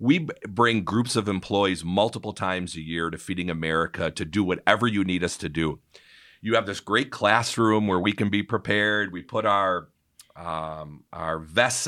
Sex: male